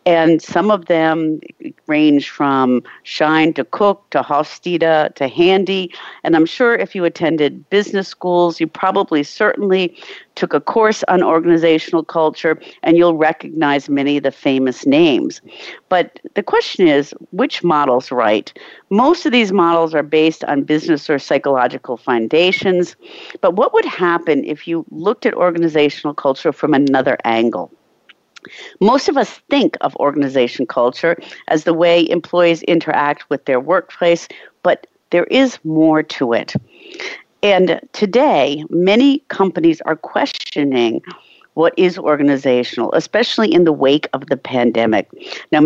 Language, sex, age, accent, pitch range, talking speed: English, female, 50-69, American, 145-195 Hz, 140 wpm